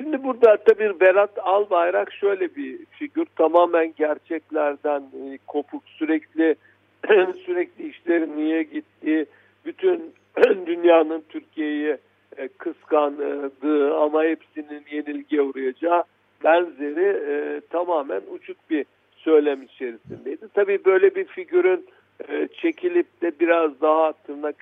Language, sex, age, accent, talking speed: Turkish, male, 60-79, native, 105 wpm